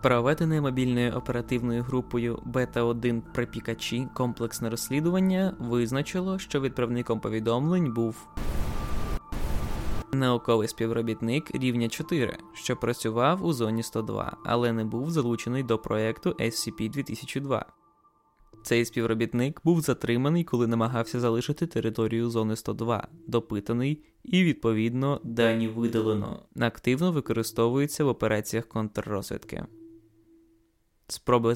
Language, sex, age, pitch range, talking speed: Ukrainian, male, 20-39, 115-145 Hz, 95 wpm